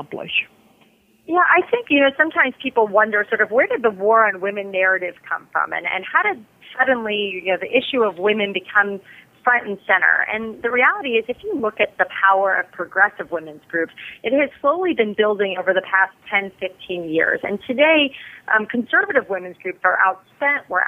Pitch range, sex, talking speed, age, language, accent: 190-235 Hz, female, 195 wpm, 30-49, English, American